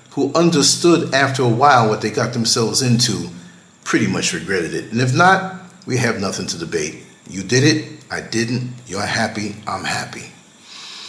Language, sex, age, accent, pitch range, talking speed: English, male, 50-69, American, 110-145 Hz, 170 wpm